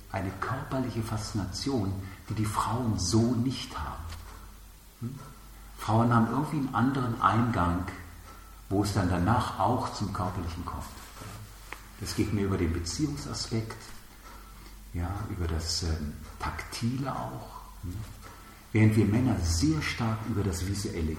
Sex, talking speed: male, 125 wpm